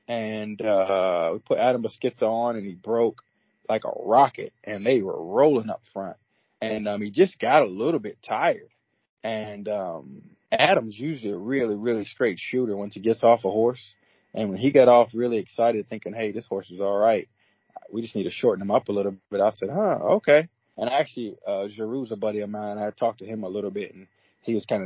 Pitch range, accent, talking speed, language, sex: 105-120 Hz, American, 215 wpm, English, male